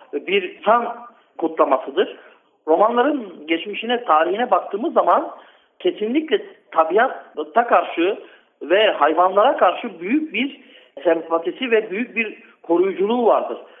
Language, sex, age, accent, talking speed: Turkish, male, 60-79, native, 95 wpm